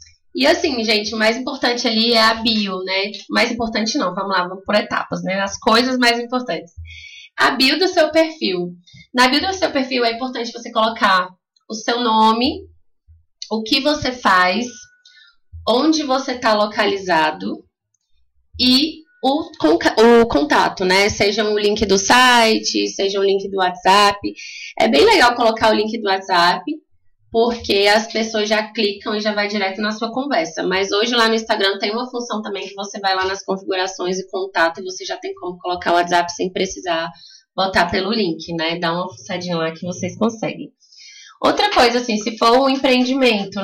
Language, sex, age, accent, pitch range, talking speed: Portuguese, female, 20-39, Brazilian, 185-245 Hz, 175 wpm